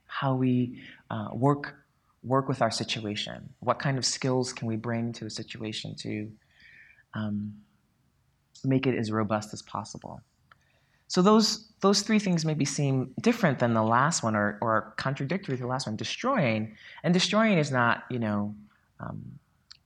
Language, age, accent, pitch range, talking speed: English, 30-49, American, 110-145 Hz, 160 wpm